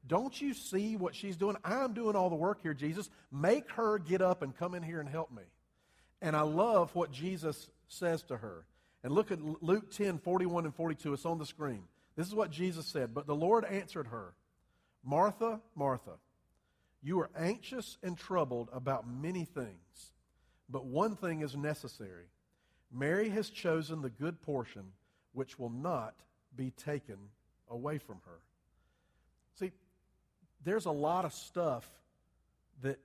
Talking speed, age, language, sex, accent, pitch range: 160 wpm, 50-69, English, male, American, 130-185 Hz